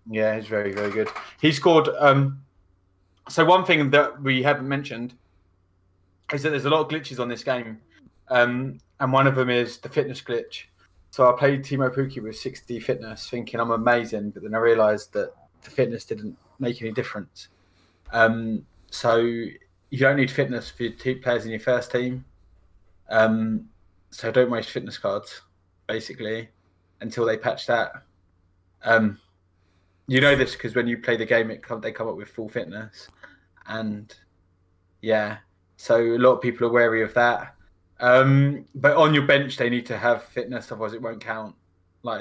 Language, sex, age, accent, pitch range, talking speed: English, male, 20-39, British, 95-130 Hz, 180 wpm